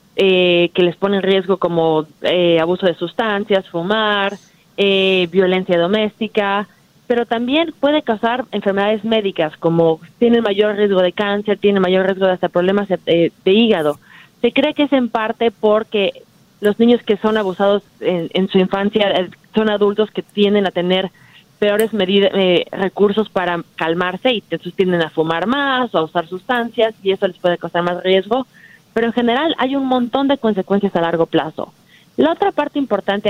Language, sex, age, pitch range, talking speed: Spanish, female, 30-49, 180-230 Hz, 175 wpm